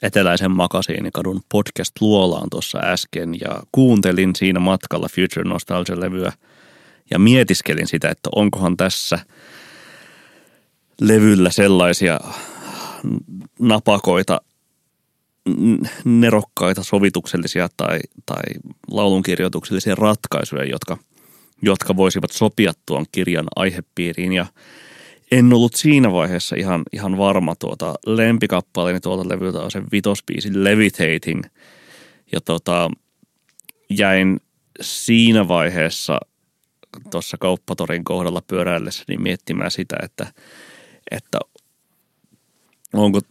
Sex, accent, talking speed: male, native, 85 wpm